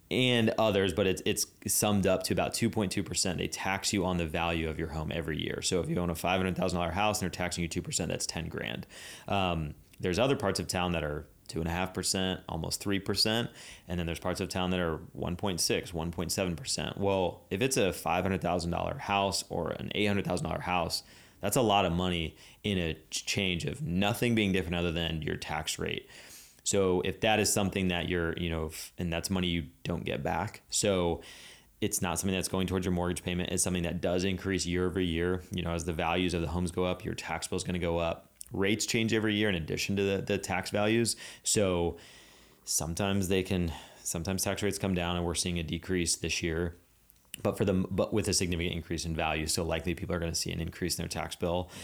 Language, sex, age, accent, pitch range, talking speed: English, male, 30-49, American, 85-100 Hz, 215 wpm